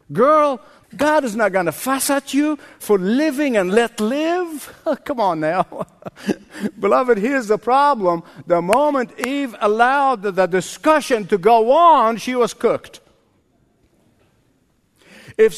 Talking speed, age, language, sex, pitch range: 130 wpm, 60-79, English, male, 210-275 Hz